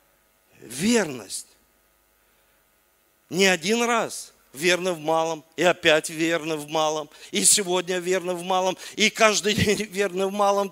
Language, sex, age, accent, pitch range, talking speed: Russian, male, 50-69, native, 175-255 Hz, 130 wpm